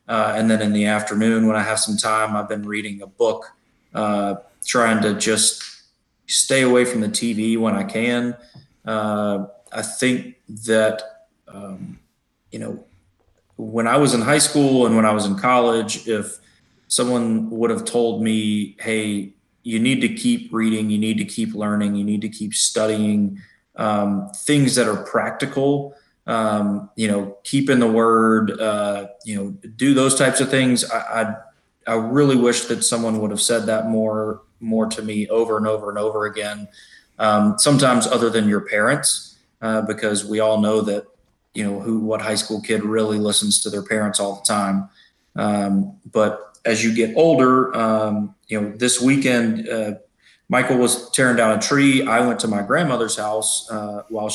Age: 20-39